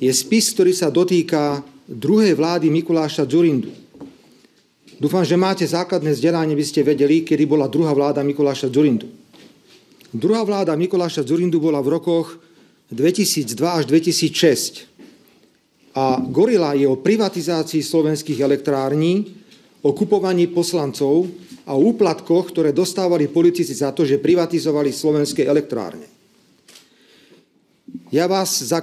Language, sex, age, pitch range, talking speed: Slovak, male, 40-59, 145-175 Hz, 120 wpm